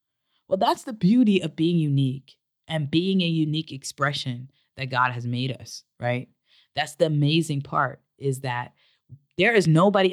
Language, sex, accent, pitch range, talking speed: English, female, American, 140-185 Hz, 160 wpm